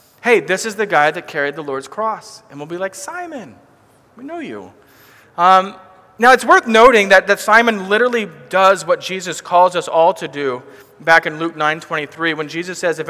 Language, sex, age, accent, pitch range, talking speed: English, male, 30-49, American, 150-195 Hz, 195 wpm